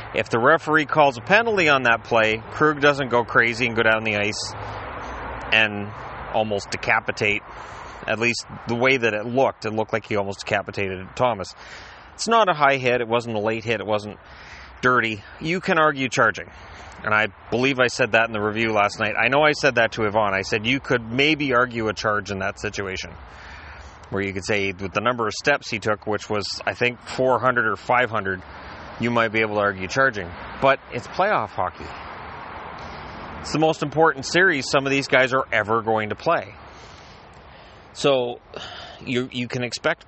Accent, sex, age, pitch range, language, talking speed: American, male, 30-49, 100-130 Hz, English, 195 wpm